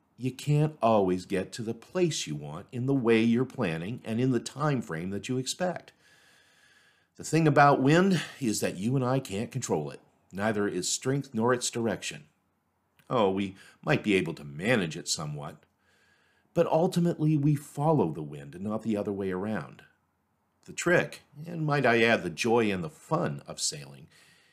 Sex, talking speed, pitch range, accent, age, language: male, 180 wpm, 95-145 Hz, American, 50-69, English